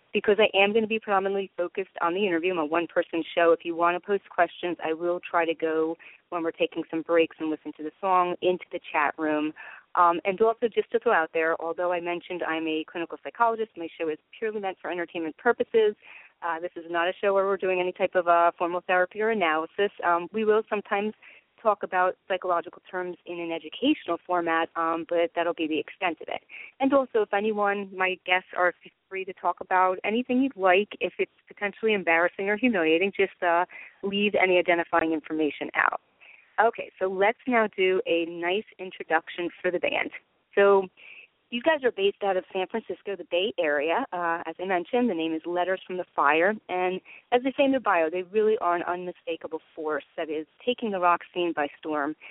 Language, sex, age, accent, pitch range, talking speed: English, female, 30-49, American, 165-200 Hz, 210 wpm